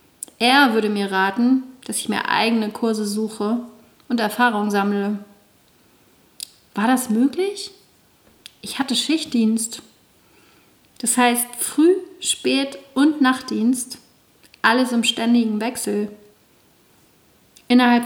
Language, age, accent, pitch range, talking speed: German, 40-59, German, 220-255 Hz, 100 wpm